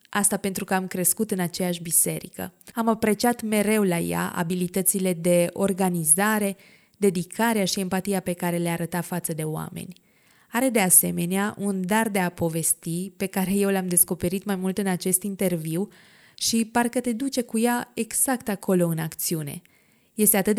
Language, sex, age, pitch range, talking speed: Romanian, female, 20-39, 180-215 Hz, 165 wpm